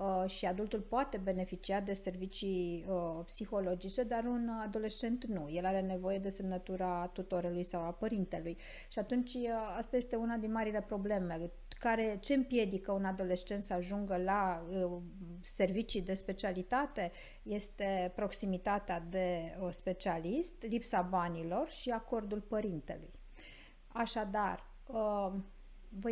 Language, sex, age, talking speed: Romanian, female, 50-69, 125 wpm